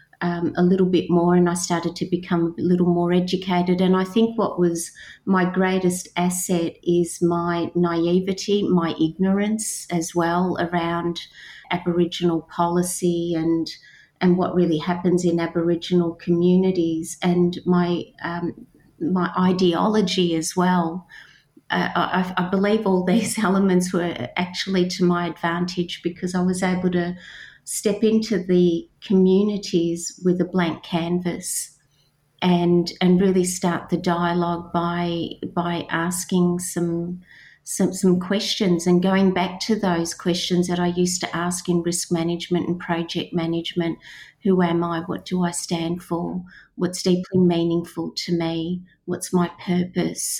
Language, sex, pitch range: English, female, 170-185 Hz